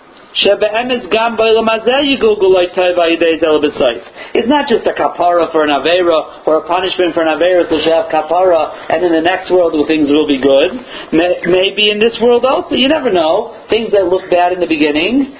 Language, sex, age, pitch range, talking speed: English, male, 50-69, 180-255 Hz, 170 wpm